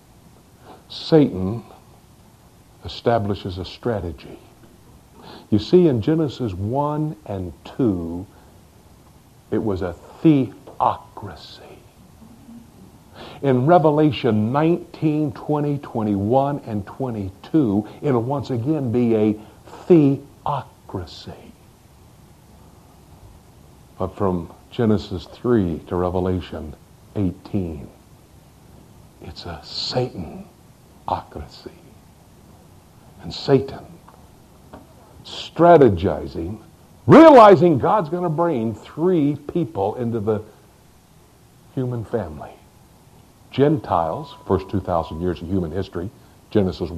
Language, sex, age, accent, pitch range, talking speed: English, male, 60-79, American, 90-135 Hz, 80 wpm